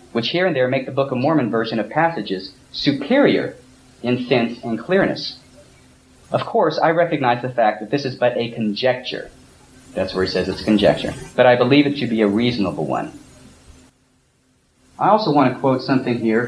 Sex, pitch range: male, 115-155 Hz